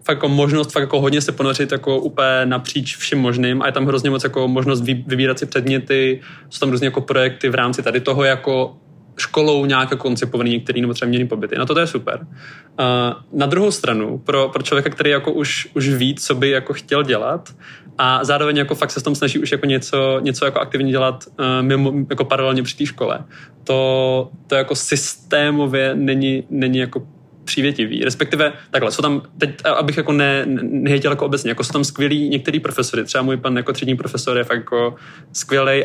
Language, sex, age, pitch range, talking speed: Czech, male, 20-39, 130-145 Hz, 200 wpm